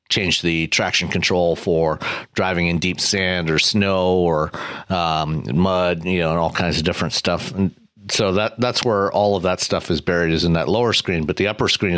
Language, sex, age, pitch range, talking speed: English, male, 40-59, 85-100 Hz, 210 wpm